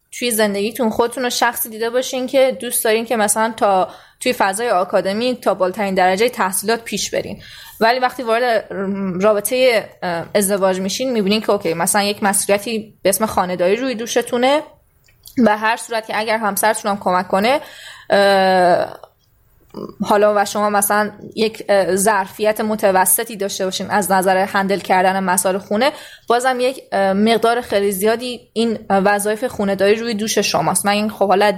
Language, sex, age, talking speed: Persian, female, 20-39, 145 wpm